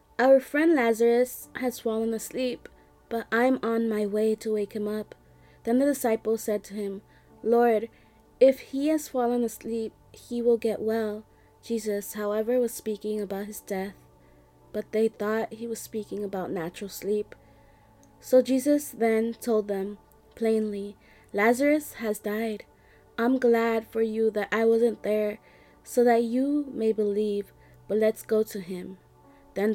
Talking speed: 150 wpm